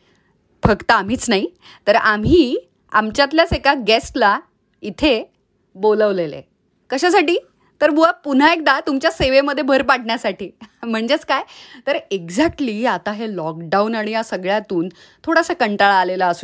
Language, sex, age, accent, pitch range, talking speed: Marathi, female, 30-49, native, 200-280 Hz, 90 wpm